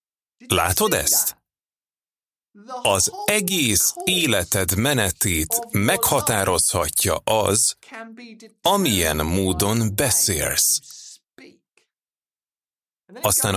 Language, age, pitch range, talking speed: Hungarian, 30-49, 95-140 Hz, 55 wpm